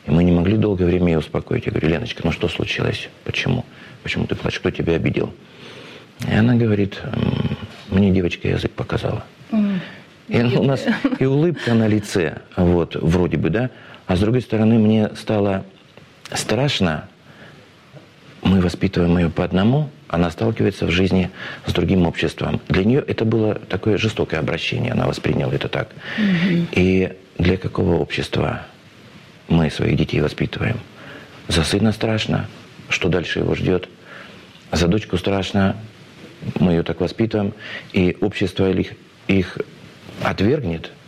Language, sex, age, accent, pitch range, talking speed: Russian, male, 50-69, native, 90-110 Hz, 140 wpm